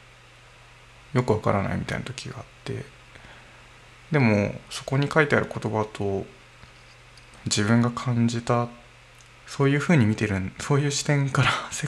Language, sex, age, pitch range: Japanese, male, 20-39, 105-130 Hz